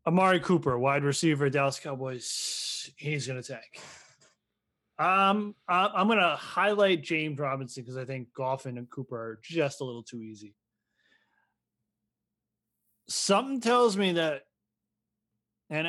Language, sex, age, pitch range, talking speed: English, male, 20-39, 125-170 Hz, 125 wpm